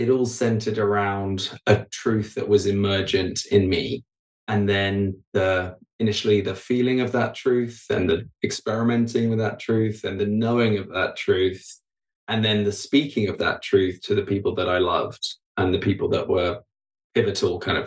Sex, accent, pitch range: male, British, 100-115 Hz